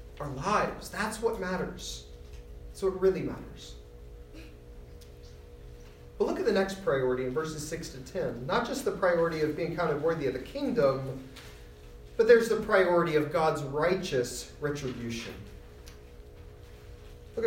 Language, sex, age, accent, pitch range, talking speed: English, male, 40-59, American, 115-185 Hz, 145 wpm